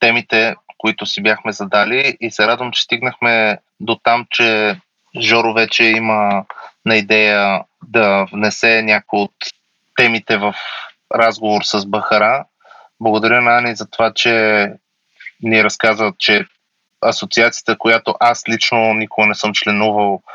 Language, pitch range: Bulgarian, 105-115 Hz